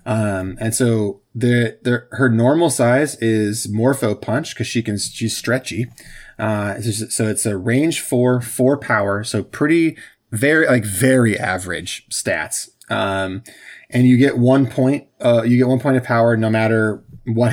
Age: 20-39